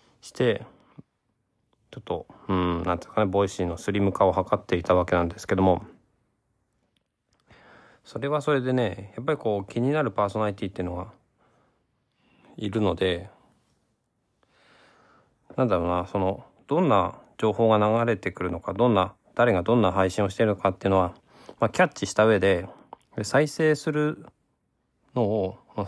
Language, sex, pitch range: Japanese, male, 95-120 Hz